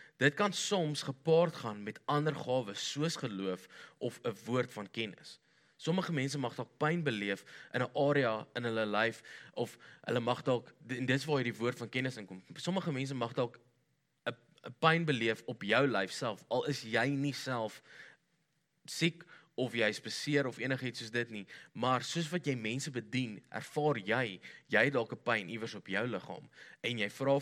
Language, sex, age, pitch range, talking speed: English, male, 20-39, 110-145 Hz, 180 wpm